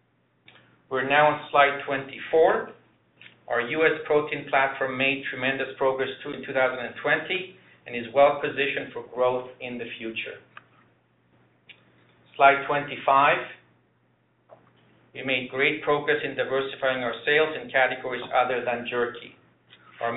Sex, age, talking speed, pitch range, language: male, 50-69, 115 wpm, 125-145 Hz, English